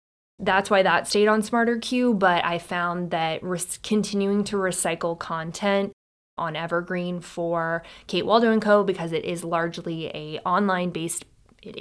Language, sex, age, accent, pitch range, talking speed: English, female, 20-39, American, 170-200 Hz, 150 wpm